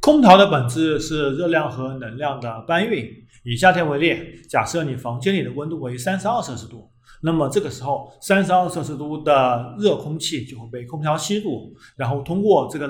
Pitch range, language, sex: 130-190 Hz, Chinese, male